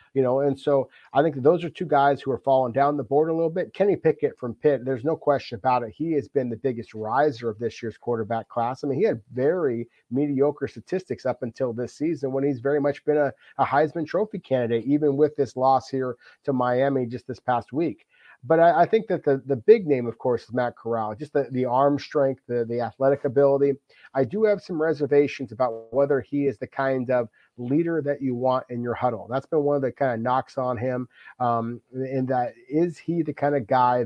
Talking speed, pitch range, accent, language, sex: 235 wpm, 125-145 Hz, American, English, male